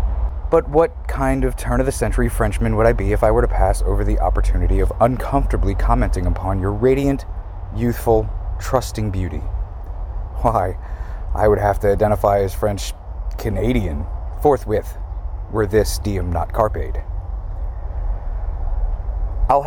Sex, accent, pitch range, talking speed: male, American, 85-110 Hz, 130 wpm